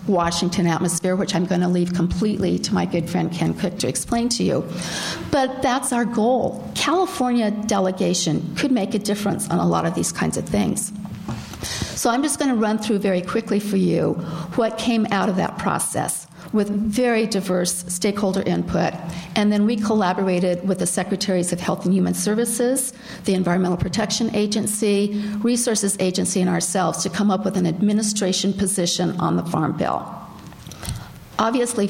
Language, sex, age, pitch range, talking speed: English, female, 50-69, 180-215 Hz, 170 wpm